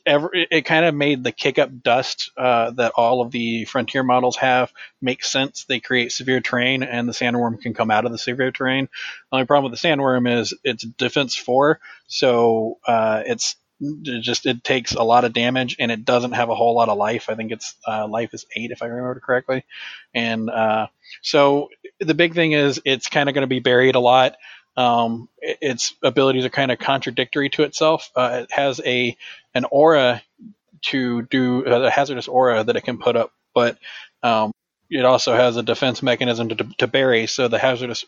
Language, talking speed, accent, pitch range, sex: English, 200 wpm, American, 120-135 Hz, male